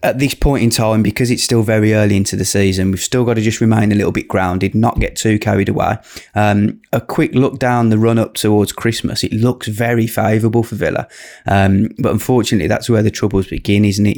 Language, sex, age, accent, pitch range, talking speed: English, male, 20-39, British, 95-110 Hz, 225 wpm